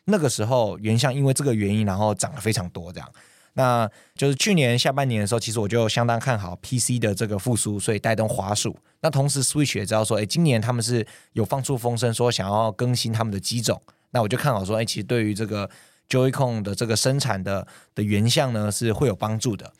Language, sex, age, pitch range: Chinese, male, 20-39, 105-130 Hz